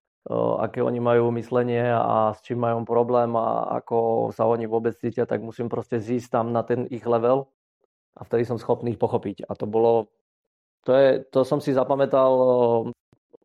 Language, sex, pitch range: Slovak, male, 115-135 Hz